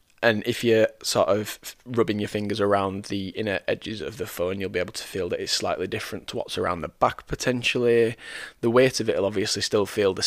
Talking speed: 230 wpm